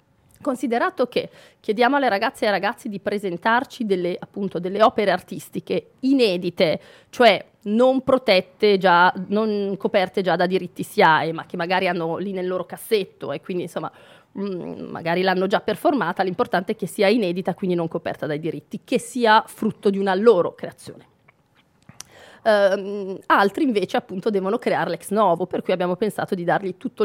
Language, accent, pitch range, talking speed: Italian, native, 180-225 Hz, 160 wpm